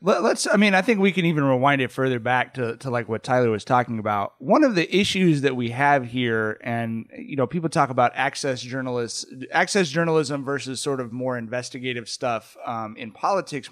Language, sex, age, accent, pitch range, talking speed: English, male, 30-49, American, 125-165 Hz, 205 wpm